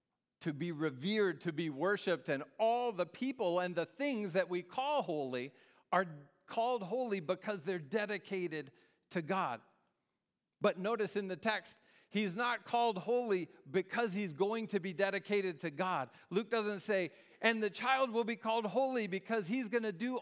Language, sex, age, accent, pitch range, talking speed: English, male, 40-59, American, 175-225 Hz, 170 wpm